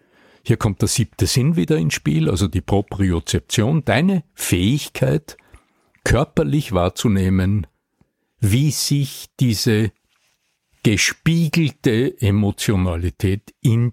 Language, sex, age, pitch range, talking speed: German, male, 60-79, 100-130 Hz, 90 wpm